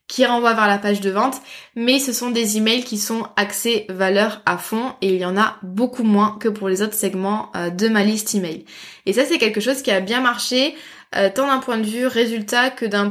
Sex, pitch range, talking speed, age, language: female, 200-235 Hz, 235 wpm, 20-39, French